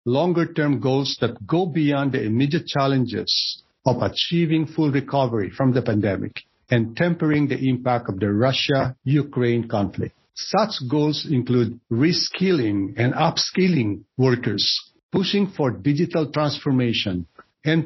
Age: 50-69